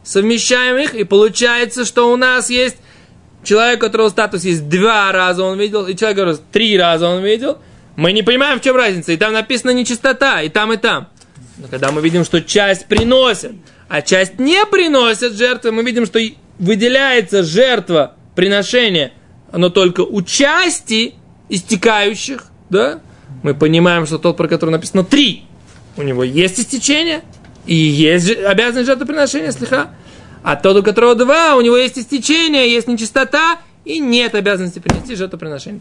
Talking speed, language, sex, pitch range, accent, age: 160 wpm, Russian, male, 185-255 Hz, native, 20-39